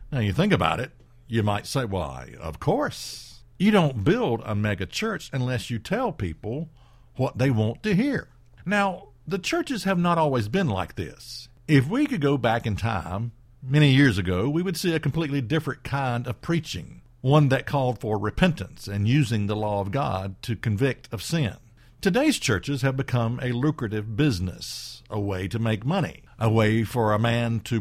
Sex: male